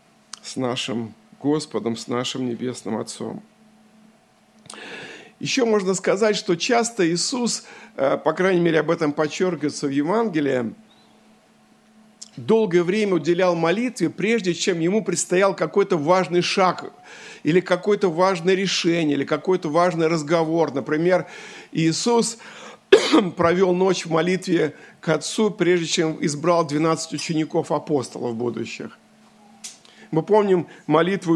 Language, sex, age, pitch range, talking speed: Russian, male, 50-69, 160-220 Hz, 110 wpm